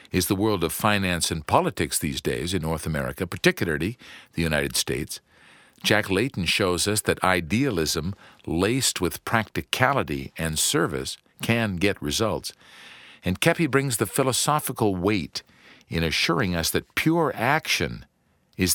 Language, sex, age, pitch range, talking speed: English, male, 50-69, 85-120 Hz, 140 wpm